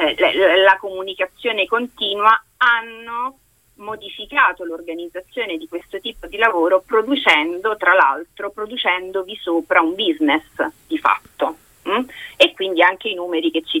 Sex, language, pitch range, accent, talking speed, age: female, Italian, 170-245 Hz, native, 120 wpm, 30-49